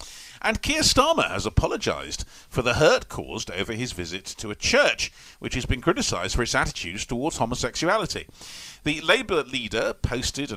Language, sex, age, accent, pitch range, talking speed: English, male, 40-59, British, 95-130 Hz, 165 wpm